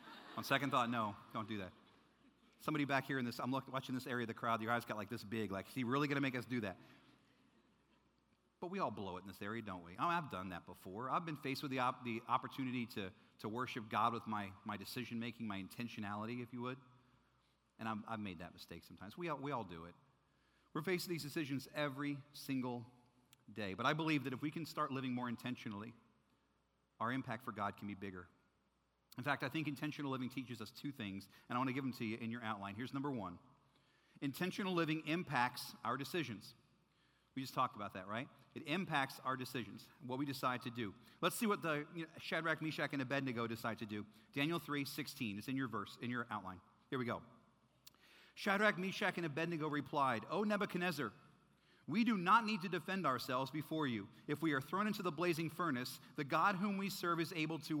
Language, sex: English, male